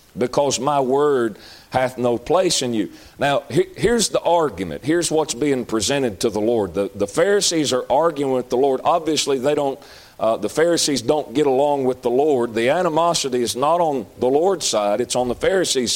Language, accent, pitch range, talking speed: English, American, 115-150 Hz, 195 wpm